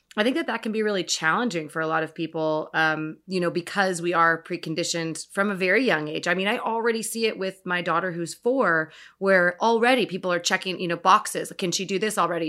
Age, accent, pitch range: 30-49, American, 170-215 Hz